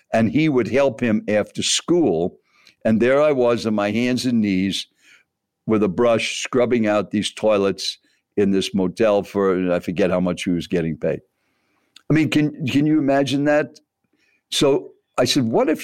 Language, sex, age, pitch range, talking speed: English, male, 60-79, 105-140 Hz, 180 wpm